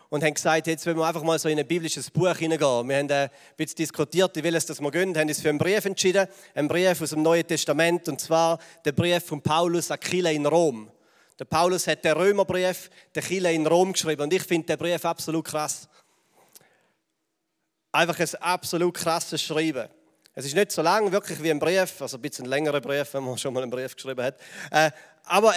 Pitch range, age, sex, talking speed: 150-175 Hz, 40-59, male, 215 wpm